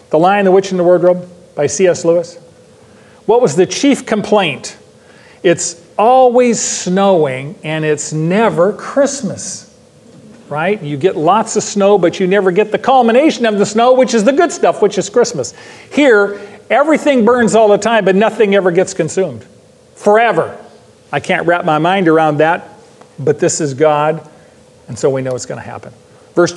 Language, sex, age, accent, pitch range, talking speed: English, male, 40-59, American, 160-210 Hz, 175 wpm